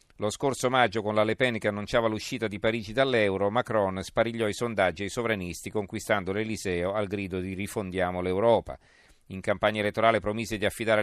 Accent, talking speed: native, 175 wpm